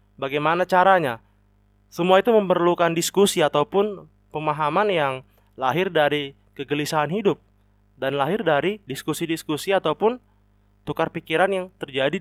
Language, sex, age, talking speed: Indonesian, male, 20-39, 110 wpm